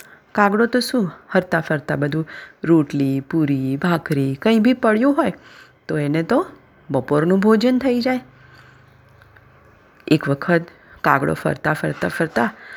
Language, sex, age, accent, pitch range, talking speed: Gujarati, female, 30-49, native, 140-210 Hz, 120 wpm